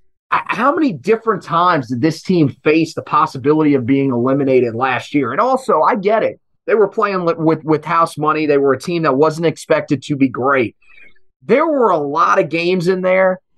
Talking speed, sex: 200 wpm, male